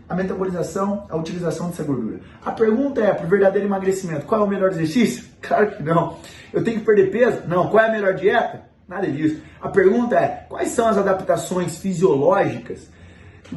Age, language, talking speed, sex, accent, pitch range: 20-39, Portuguese, 190 wpm, male, Brazilian, 150-195 Hz